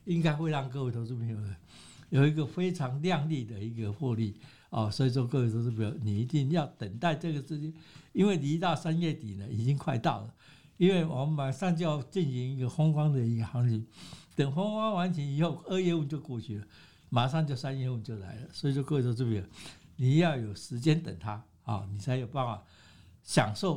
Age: 60-79